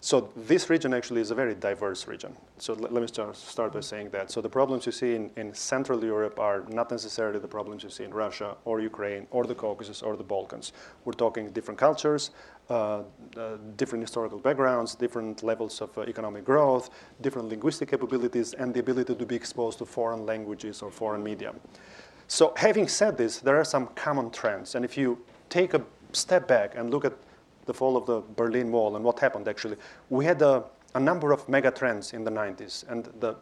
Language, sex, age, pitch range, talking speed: English, male, 30-49, 110-135 Hz, 200 wpm